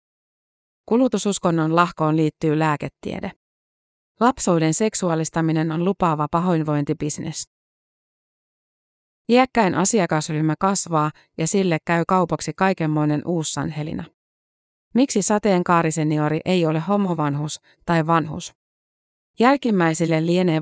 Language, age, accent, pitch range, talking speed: Finnish, 30-49, native, 155-185 Hz, 80 wpm